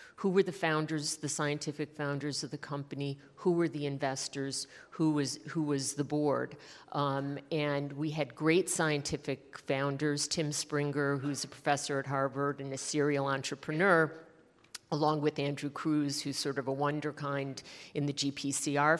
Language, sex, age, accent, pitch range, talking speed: English, female, 50-69, American, 140-160 Hz, 160 wpm